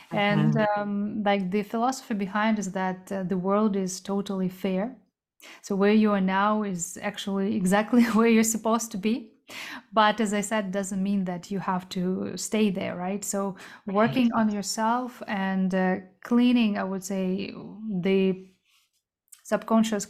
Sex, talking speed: female, 155 wpm